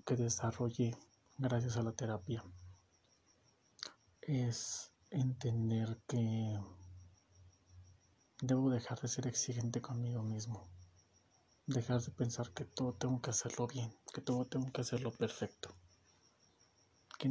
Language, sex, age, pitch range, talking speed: Spanish, male, 40-59, 110-130 Hz, 110 wpm